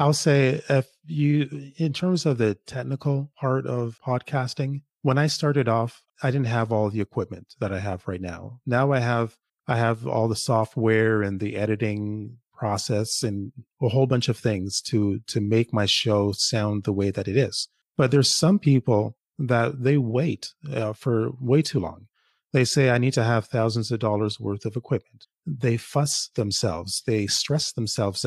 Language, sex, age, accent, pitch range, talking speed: English, male, 30-49, American, 105-135 Hz, 185 wpm